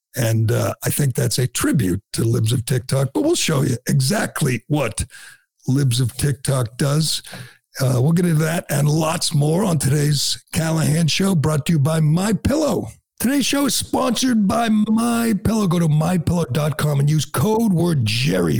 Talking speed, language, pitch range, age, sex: 170 wpm, English, 140-175 Hz, 60-79, male